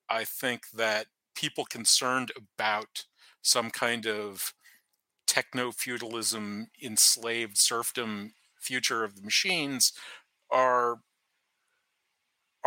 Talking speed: 85 wpm